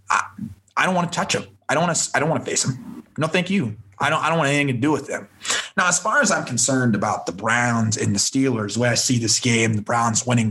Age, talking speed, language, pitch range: 30-49, 290 wpm, English, 120-165 Hz